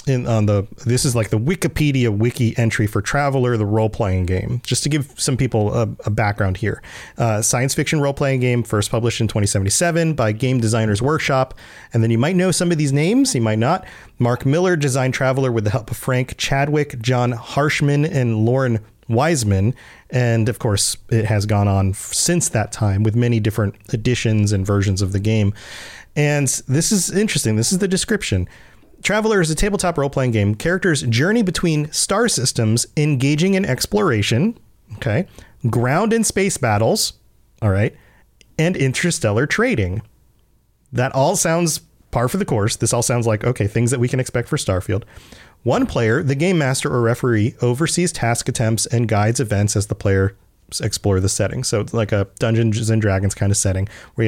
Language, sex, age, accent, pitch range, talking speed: English, male, 30-49, American, 110-145 Hz, 180 wpm